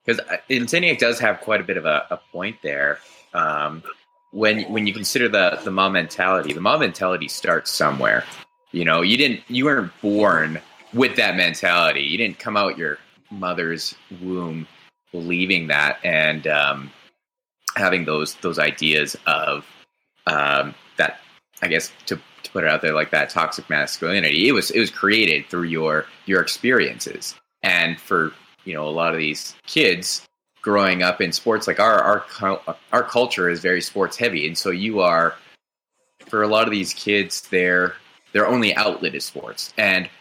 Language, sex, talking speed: English, male, 170 wpm